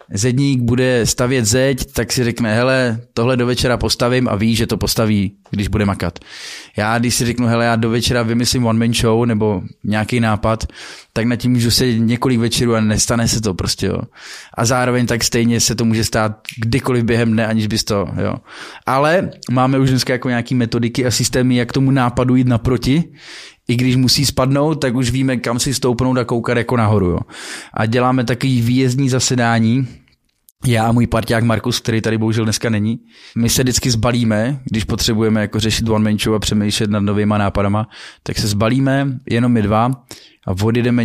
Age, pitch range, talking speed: 20-39, 110-125 Hz, 185 wpm